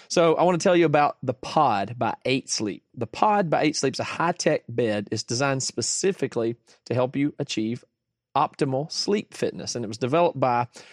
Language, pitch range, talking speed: English, 120-155 Hz, 185 wpm